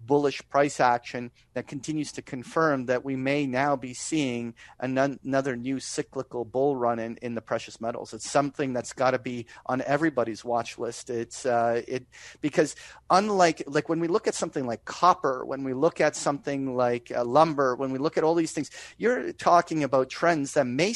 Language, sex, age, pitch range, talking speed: English, male, 40-59, 125-160 Hz, 195 wpm